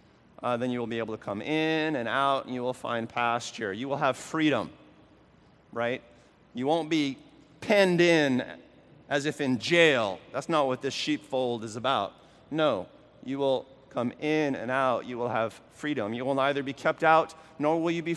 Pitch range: 120-150 Hz